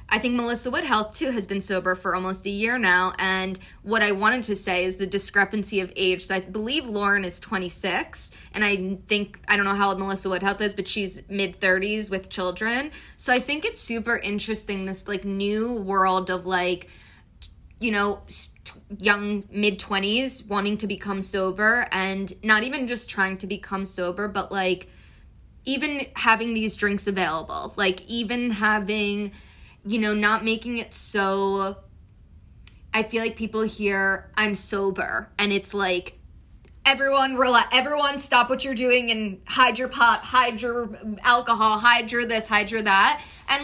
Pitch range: 195-230 Hz